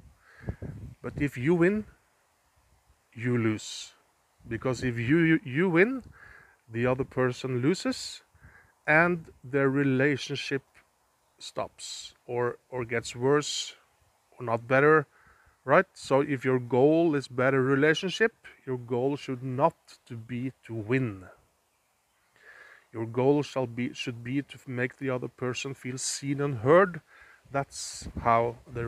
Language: English